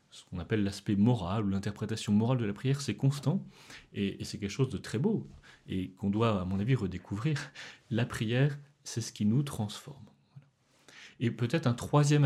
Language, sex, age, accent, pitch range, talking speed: French, male, 30-49, French, 105-135 Hz, 185 wpm